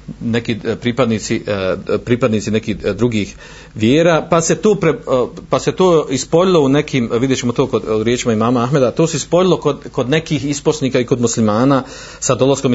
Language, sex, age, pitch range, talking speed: Croatian, male, 40-59, 110-135 Hz, 150 wpm